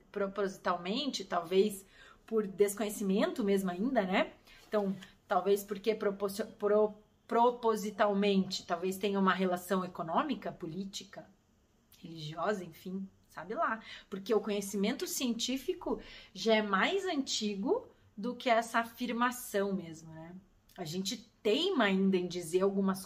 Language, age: Portuguese, 30-49